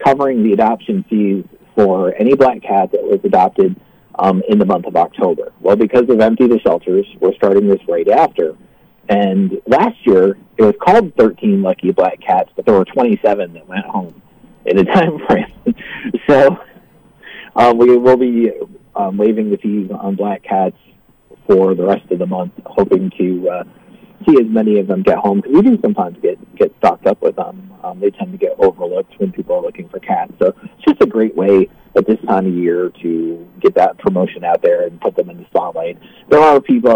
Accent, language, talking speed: American, English, 205 wpm